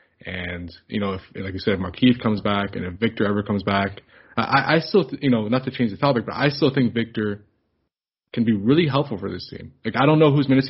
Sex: male